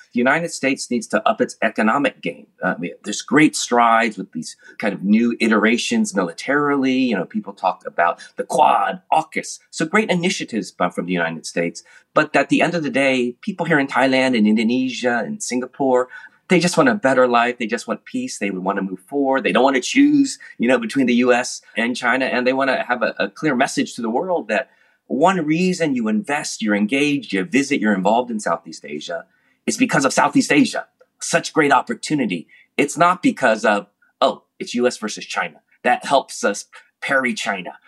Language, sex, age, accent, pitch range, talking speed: English, male, 30-49, American, 105-175 Hz, 200 wpm